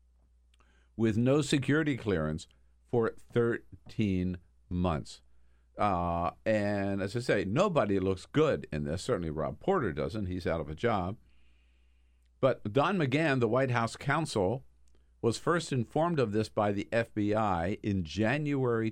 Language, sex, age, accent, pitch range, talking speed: English, male, 50-69, American, 70-110 Hz, 135 wpm